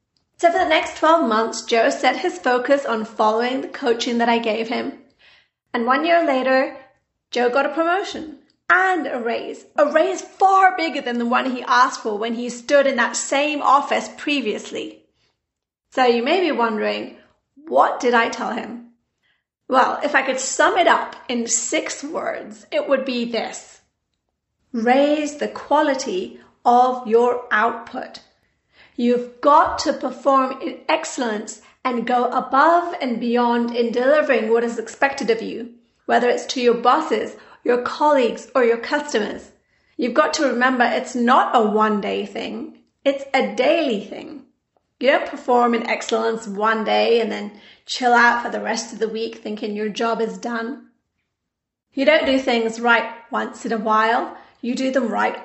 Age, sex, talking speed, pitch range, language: 30-49, female, 165 wpm, 235-290 Hz, English